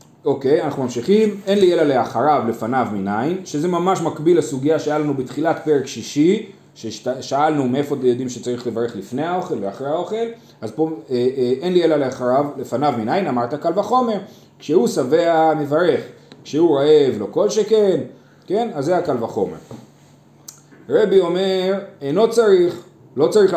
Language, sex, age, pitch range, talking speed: Hebrew, male, 30-49, 125-200 Hz, 150 wpm